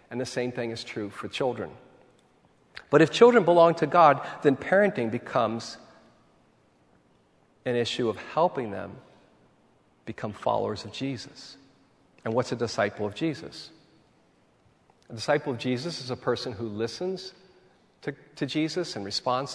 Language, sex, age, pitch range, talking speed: English, male, 40-59, 120-160 Hz, 140 wpm